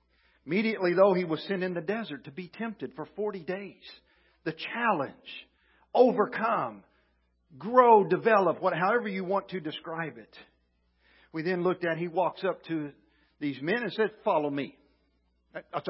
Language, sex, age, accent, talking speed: English, male, 50-69, American, 150 wpm